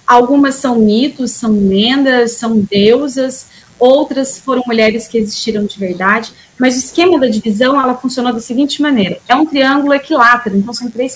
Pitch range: 210-265 Hz